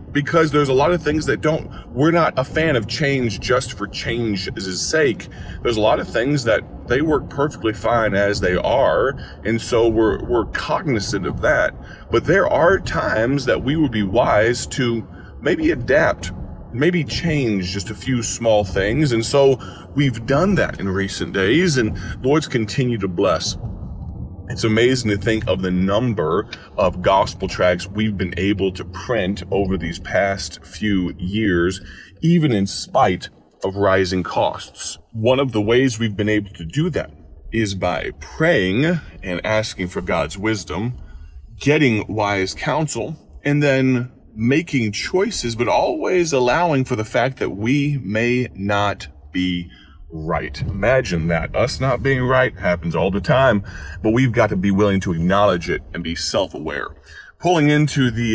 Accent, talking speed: American, 160 wpm